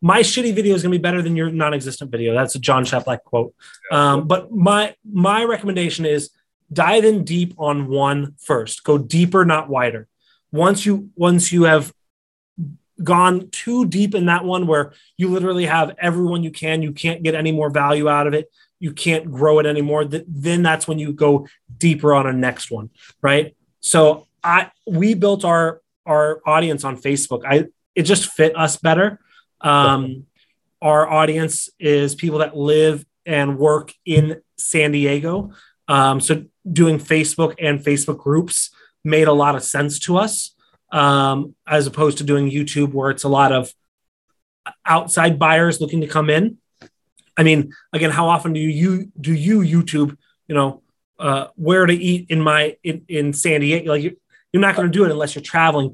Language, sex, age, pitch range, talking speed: English, male, 20-39, 145-175 Hz, 180 wpm